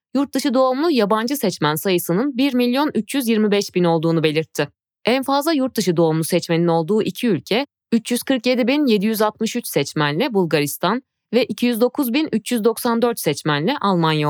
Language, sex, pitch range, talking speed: Turkish, female, 165-250 Hz, 95 wpm